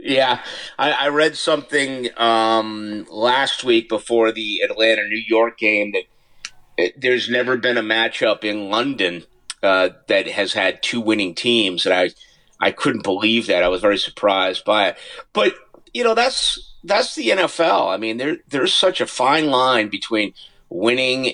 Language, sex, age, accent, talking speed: English, male, 50-69, American, 165 wpm